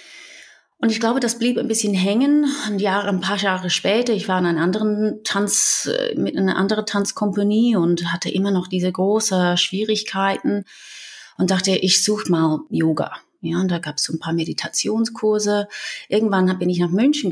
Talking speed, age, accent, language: 175 wpm, 30-49, German, German